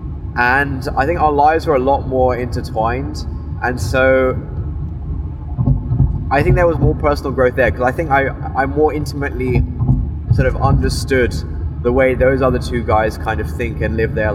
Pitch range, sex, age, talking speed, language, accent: 80-130 Hz, male, 20-39, 175 wpm, English, British